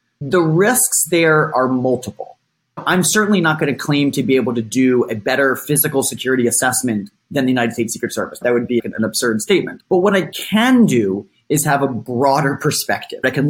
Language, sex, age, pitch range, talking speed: English, male, 20-39, 120-155 Hz, 200 wpm